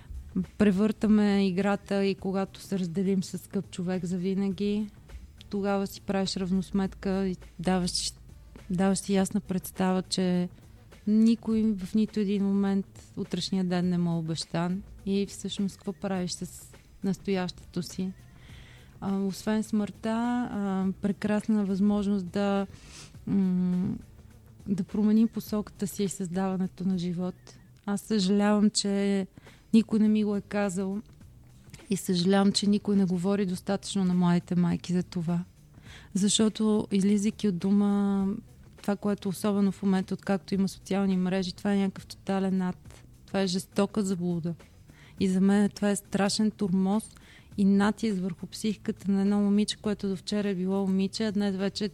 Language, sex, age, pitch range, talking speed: Bulgarian, female, 30-49, 185-205 Hz, 135 wpm